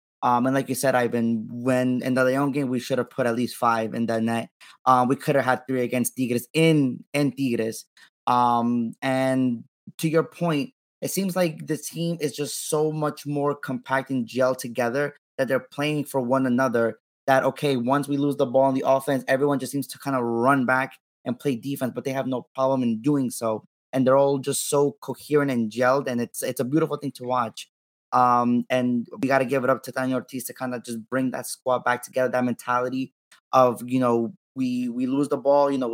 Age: 20-39